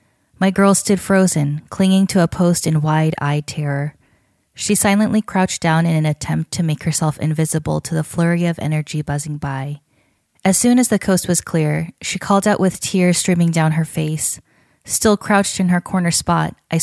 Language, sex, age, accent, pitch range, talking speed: English, female, 10-29, American, 155-190 Hz, 185 wpm